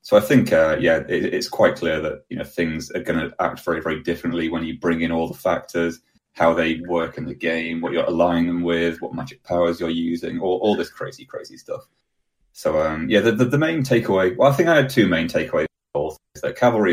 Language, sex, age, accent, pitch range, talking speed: English, male, 30-49, British, 80-100 Hz, 250 wpm